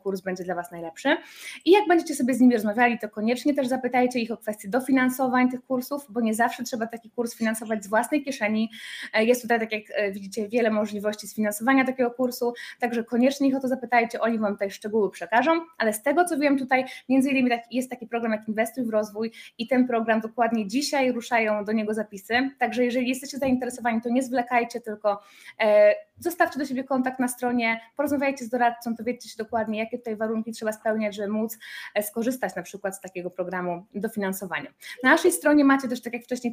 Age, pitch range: 20-39, 215-255 Hz